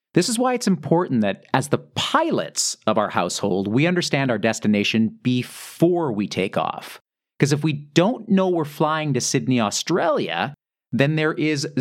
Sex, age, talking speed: male, 40-59, 170 wpm